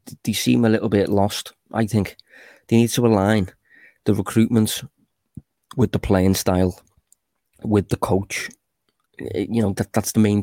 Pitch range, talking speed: 100-110 Hz, 155 wpm